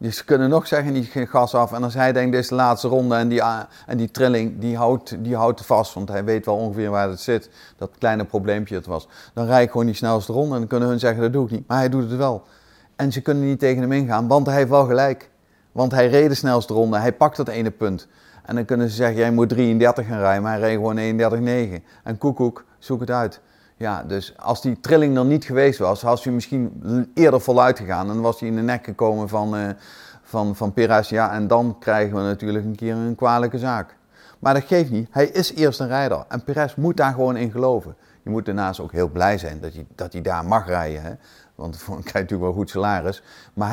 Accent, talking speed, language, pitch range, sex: Dutch, 250 wpm, Dutch, 105-125 Hz, male